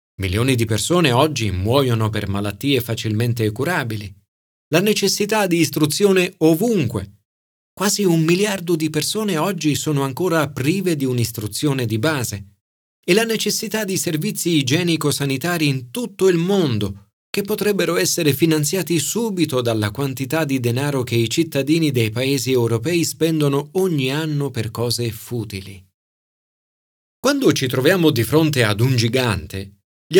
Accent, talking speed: native, 135 wpm